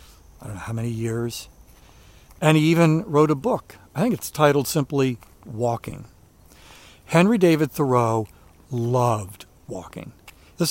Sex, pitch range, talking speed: male, 100-145 Hz, 135 wpm